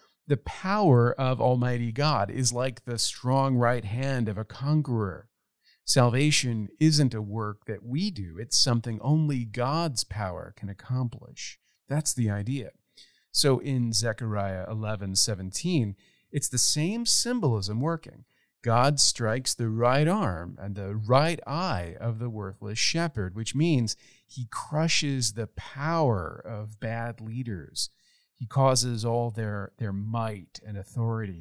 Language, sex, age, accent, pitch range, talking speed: English, male, 40-59, American, 110-145 Hz, 135 wpm